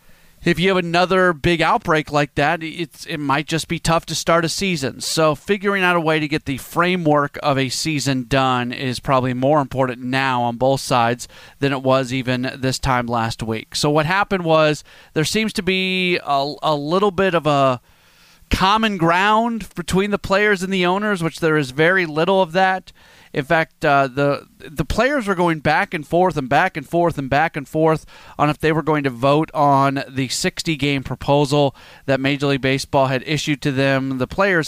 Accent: American